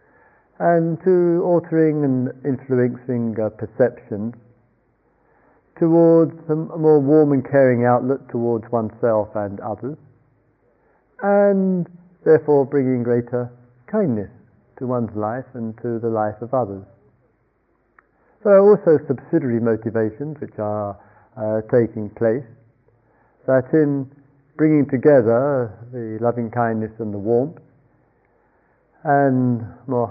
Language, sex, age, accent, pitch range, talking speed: English, male, 50-69, British, 115-140 Hz, 110 wpm